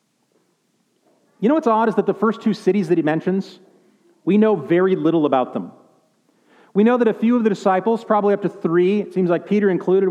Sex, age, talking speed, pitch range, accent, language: male, 40-59, 215 wpm, 165-220 Hz, American, English